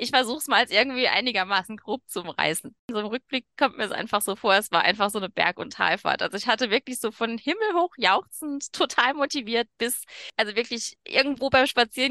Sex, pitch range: female, 175-240 Hz